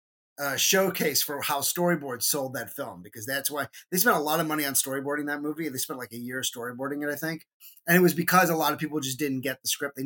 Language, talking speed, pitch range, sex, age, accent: English, 260 wpm, 125-155 Hz, male, 30-49, American